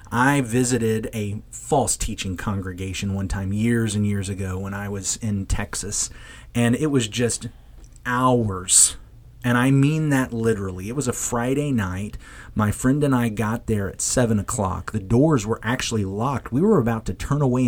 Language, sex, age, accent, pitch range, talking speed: English, male, 30-49, American, 105-130 Hz, 175 wpm